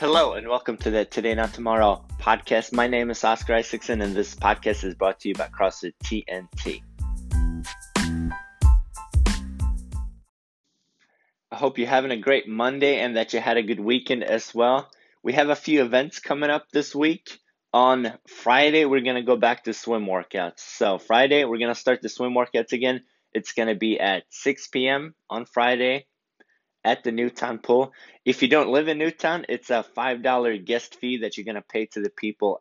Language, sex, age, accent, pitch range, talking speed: English, male, 20-39, American, 110-130 Hz, 185 wpm